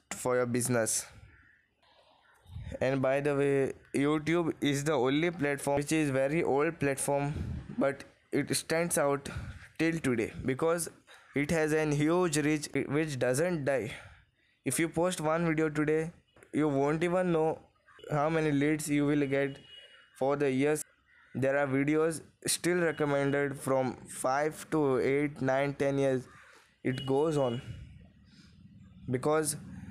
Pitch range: 130-155 Hz